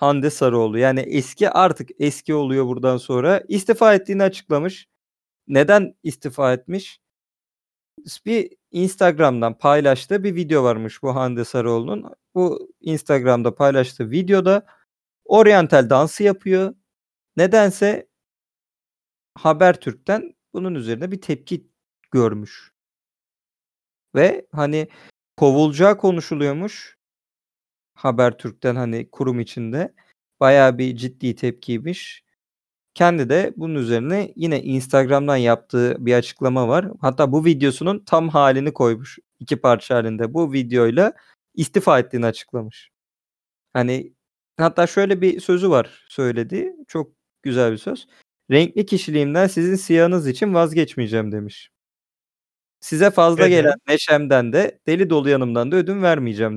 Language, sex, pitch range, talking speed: Turkish, male, 125-180 Hz, 110 wpm